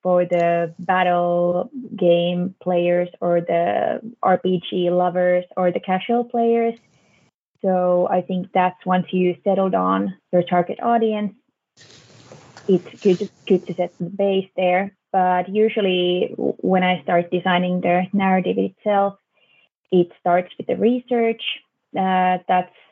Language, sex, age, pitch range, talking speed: English, female, 20-39, 180-200 Hz, 125 wpm